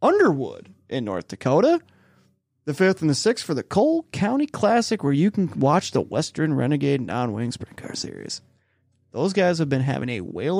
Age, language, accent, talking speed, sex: 20-39, English, American, 180 wpm, male